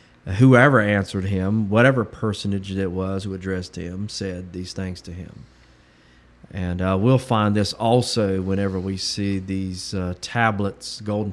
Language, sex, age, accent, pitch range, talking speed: English, male, 40-59, American, 90-110 Hz, 150 wpm